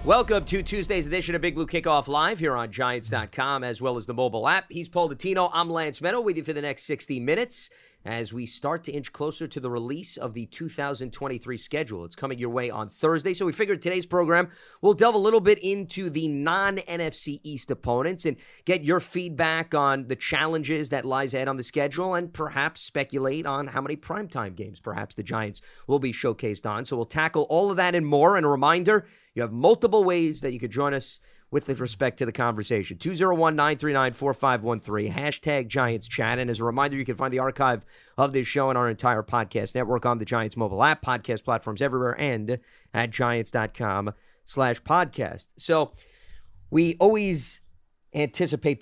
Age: 30-49